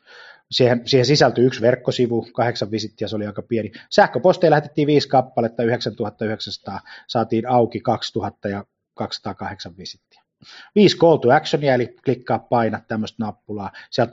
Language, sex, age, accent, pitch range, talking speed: Finnish, male, 20-39, native, 110-145 Hz, 125 wpm